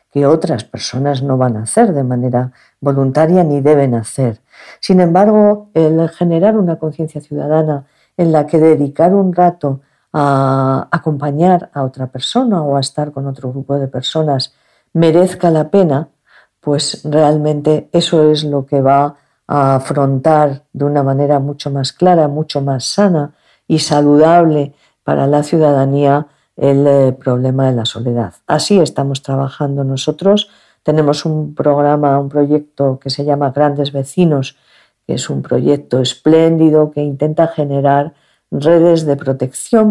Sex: female